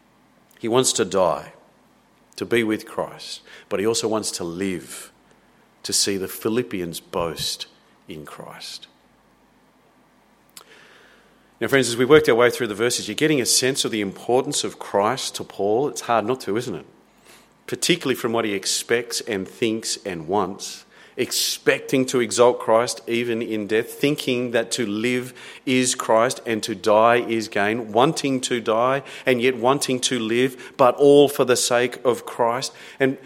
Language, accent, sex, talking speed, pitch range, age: English, Australian, male, 165 wpm, 115-145 Hz, 40-59